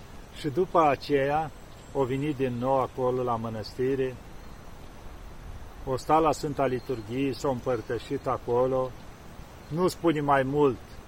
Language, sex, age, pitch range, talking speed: Romanian, male, 50-69, 120-160 Hz, 125 wpm